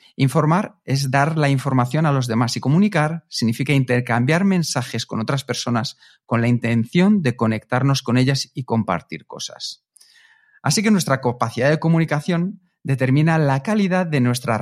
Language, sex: Spanish, male